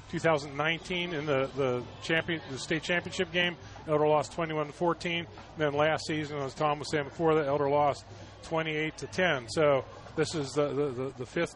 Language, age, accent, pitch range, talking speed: English, 40-59, American, 140-160 Hz, 215 wpm